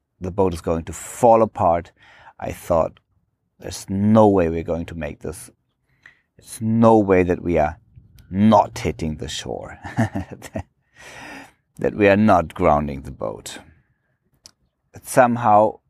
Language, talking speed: English, 135 wpm